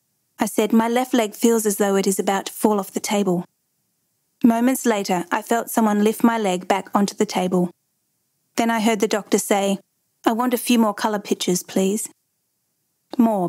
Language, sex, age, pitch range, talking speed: English, female, 30-49, 185-230 Hz, 190 wpm